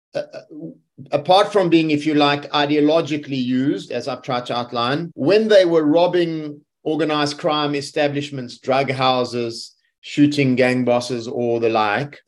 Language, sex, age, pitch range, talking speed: English, male, 30-49, 130-155 Hz, 140 wpm